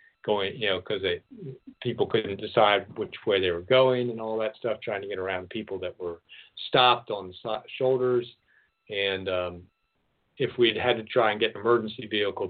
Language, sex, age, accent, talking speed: English, male, 50-69, American, 190 wpm